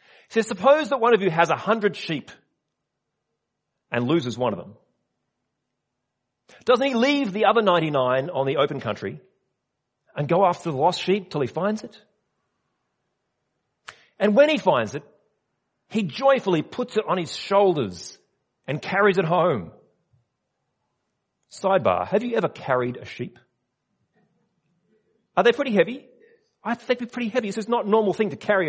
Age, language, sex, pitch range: 40-59, English, male, 155-235 Hz